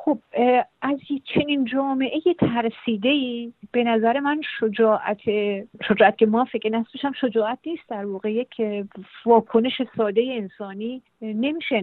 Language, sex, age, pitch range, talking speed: Persian, female, 50-69, 205-255 Hz, 115 wpm